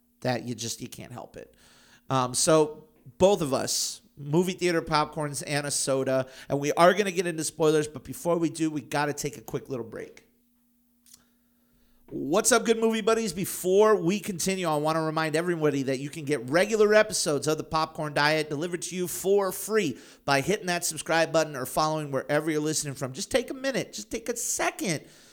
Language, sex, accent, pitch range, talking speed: English, male, American, 145-200 Hz, 200 wpm